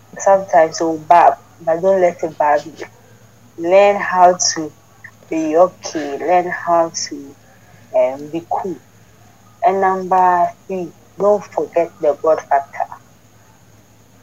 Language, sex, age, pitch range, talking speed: English, female, 30-49, 145-195 Hz, 120 wpm